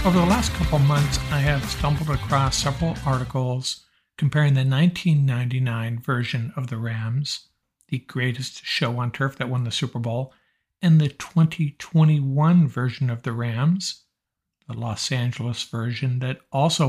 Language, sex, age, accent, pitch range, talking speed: English, male, 60-79, American, 120-145 Hz, 145 wpm